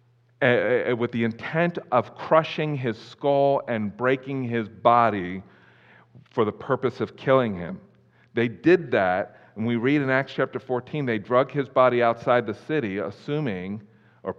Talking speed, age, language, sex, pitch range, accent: 155 wpm, 40-59, English, male, 115-140 Hz, American